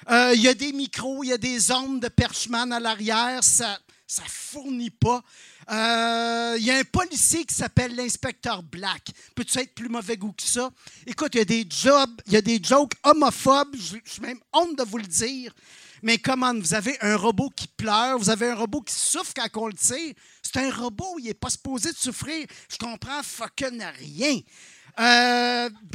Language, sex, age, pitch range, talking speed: French, male, 50-69, 230-285 Hz, 205 wpm